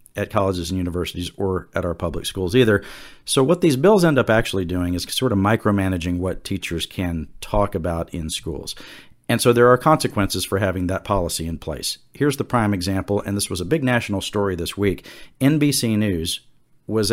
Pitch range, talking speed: 95-130 Hz, 195 wpm